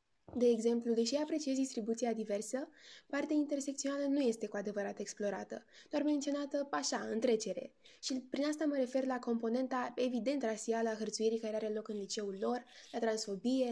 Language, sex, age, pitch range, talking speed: Romanian, female, 10-29, 225-280 Hz, 160 wpm